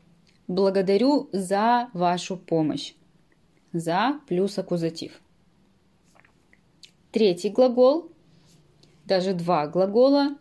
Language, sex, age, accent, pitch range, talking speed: Russian, female, 20-39, native, 175-230 Hz, 65 wpm